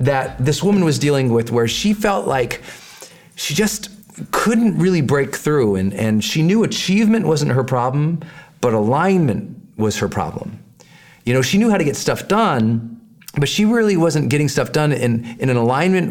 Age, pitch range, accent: 40-59, 110-160 Hz, American